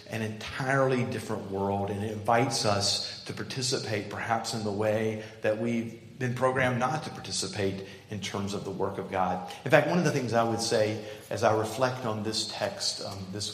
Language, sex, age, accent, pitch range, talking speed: English, male, 40-59, American, 100-115 Hz, 200 wpm